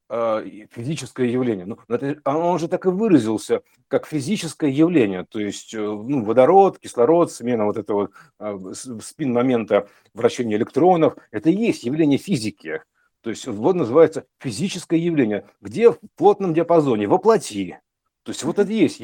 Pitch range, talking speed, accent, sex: 110-170 Hz, 150 wpm, native, male